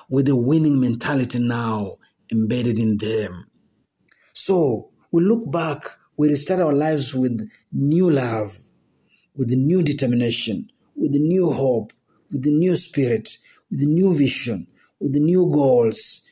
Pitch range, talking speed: 115-150 Hz, 145 wpm